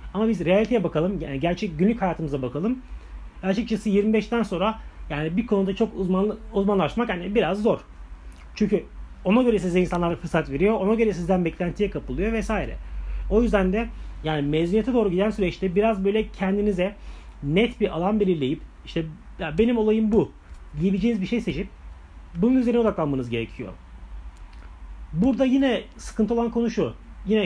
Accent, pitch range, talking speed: native, 155-220 Hz, 150 wpm